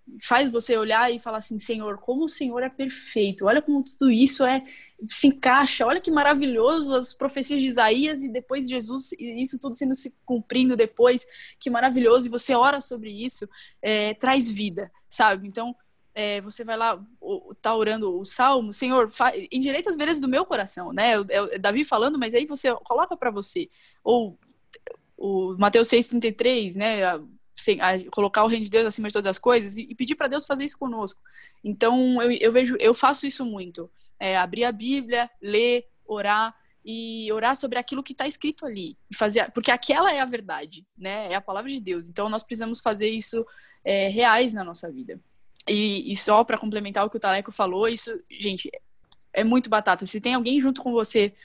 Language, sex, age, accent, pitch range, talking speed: Portuguese, female, 10-29, Brazilian, 210-260 Hz, 195 wpm